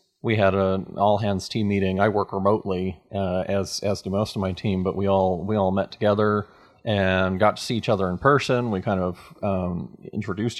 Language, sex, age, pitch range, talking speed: English, male, 30-49, 95-115 Hz, 215 wpm